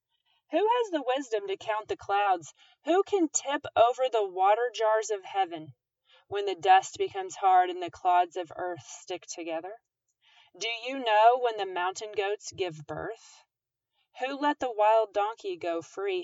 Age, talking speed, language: 30-49, 165 wpm, English